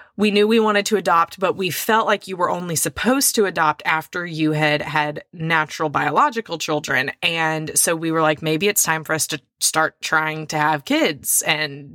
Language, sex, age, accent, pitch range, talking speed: English, female, 20-39, American, 155-220 Hz, 200 wpm